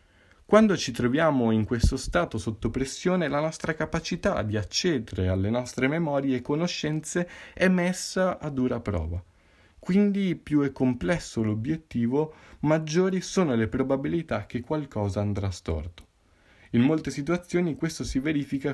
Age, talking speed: 20-39, 135 wpm